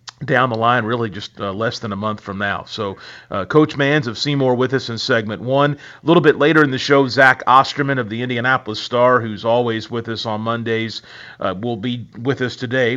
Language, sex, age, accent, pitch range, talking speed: English, male, 40-59, American, 110-130 Hz, 220 wpm